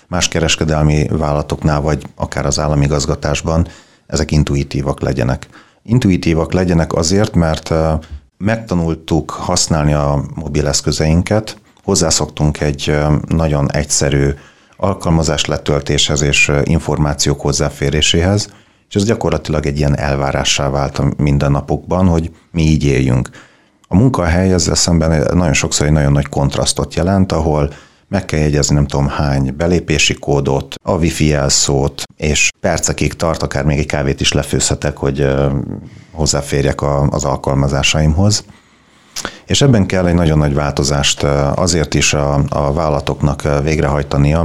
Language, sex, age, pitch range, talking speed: Hungarian, male, 40-59, 70-80 Hz, 120 wpm